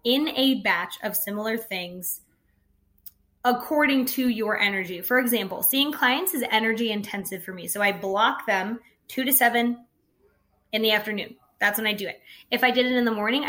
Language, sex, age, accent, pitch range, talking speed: English, female, 20-39, American, 200-240 Hz, 180 wpm